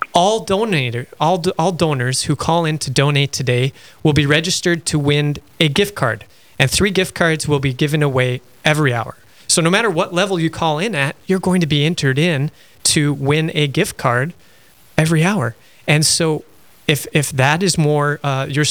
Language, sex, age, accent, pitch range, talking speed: English, male, 30-49, American, 130-160 Hz, 195 wpm